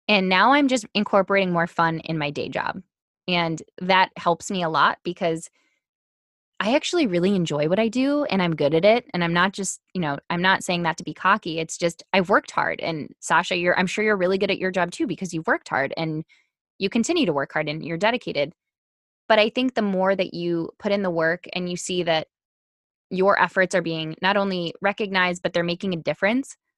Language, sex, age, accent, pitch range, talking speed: English, female, 10-29, American, 165-205 Hz, 225 wpm